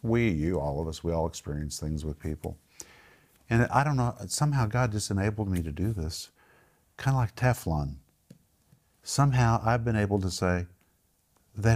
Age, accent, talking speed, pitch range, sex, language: 50-69, American, 175 wpm, 85-115 Hz, male, English